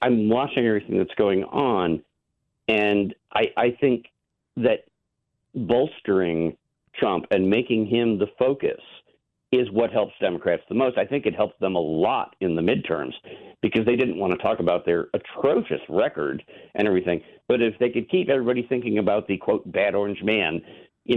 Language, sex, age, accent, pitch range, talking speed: English, male, 50-69, American, 100-120 Hz, 170 wpm